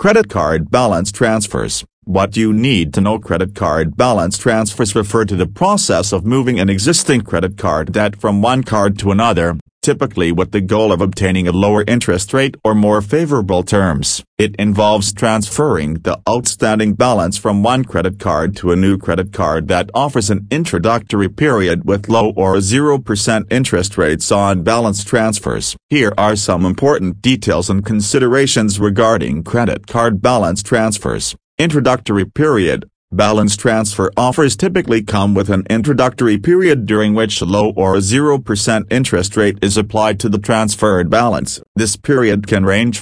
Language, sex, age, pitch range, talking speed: English, male, 40-59, 100-120 Hz, 160 wpm